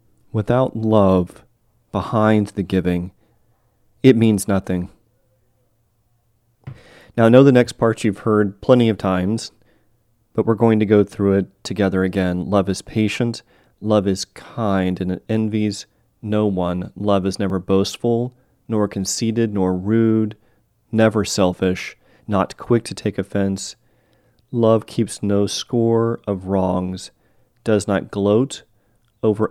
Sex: male